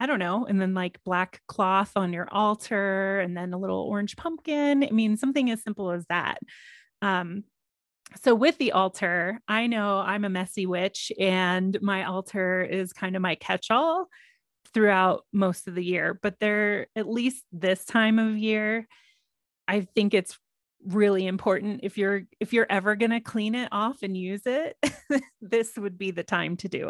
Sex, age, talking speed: female, 30-49, 180 wpm